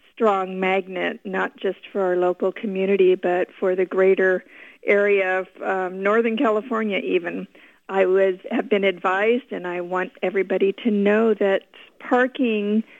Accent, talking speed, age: American, 145 wpm, 50-69